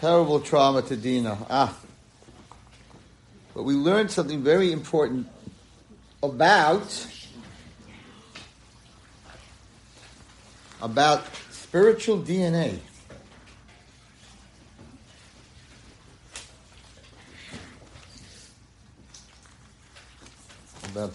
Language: English